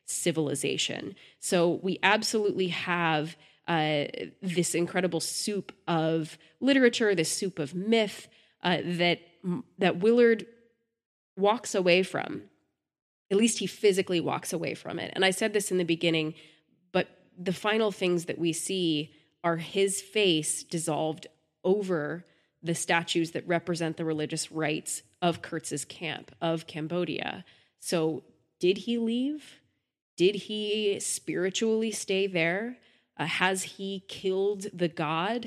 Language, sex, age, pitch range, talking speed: English, female, 20-39, 160-195 Hz, 130 wpm